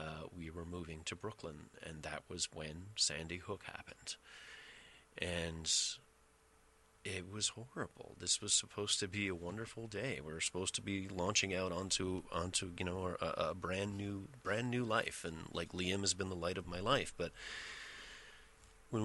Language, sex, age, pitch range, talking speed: English, male, 30-49, 85-105 Hz, 175 wpm